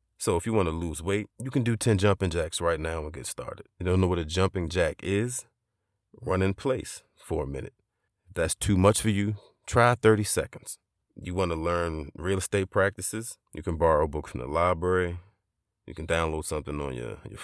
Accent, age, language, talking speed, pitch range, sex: American, 30-49, English, 215 wpm, 80-100 Hz, male